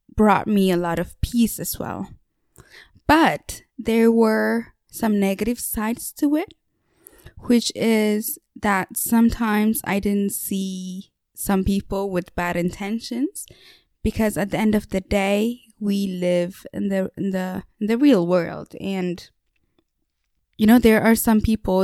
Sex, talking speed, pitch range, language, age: female, 140 wpm, 190-220 Hz, English, 20-39